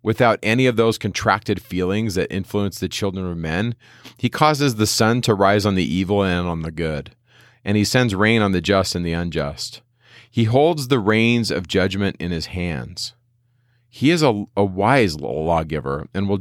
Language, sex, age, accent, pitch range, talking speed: English, male, 40-59, American, 90-120 Hz, 190 wpm